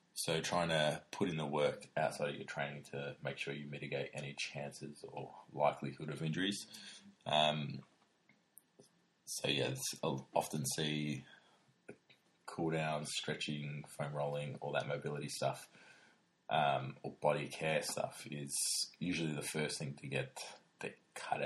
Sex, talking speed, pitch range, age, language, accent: male, 140 wpm, 70-75 Hz, 20-39, English, Australian